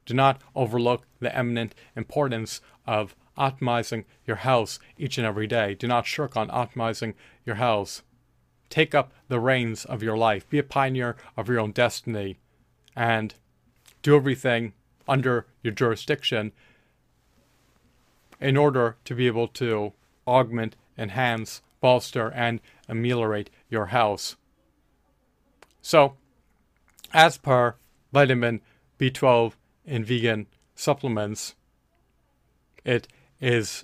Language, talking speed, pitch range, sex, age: English, 115 wpm, 110-130 Hz, male, 40-59